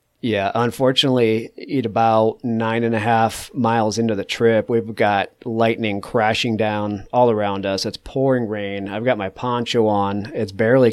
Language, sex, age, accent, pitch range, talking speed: English, male, 30-49, American, 105-125 Hz, 165 wpm